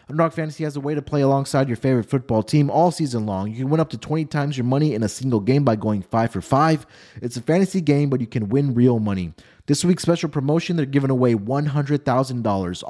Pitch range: 110-145 Hz